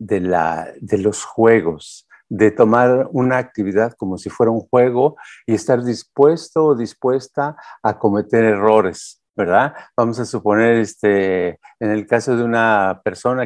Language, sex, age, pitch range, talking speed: Spanish, male, 50-69, 110-140 Hz, 145 wpm